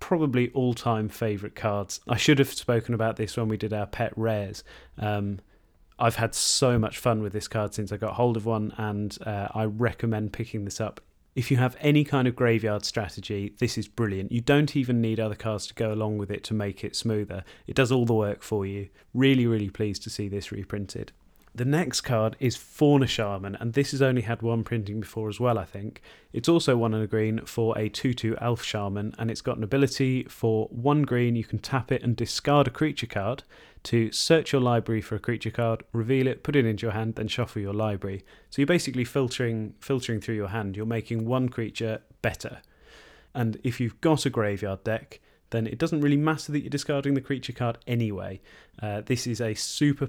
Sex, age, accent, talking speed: male, 30-49, British, 215 wpm